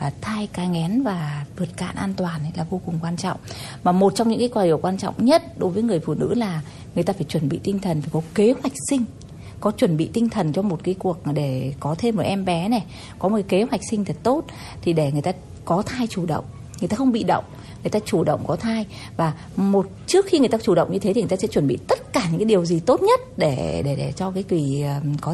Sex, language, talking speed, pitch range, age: female, Vietnamese, 265 wpm, 155-220 Hz, 20-39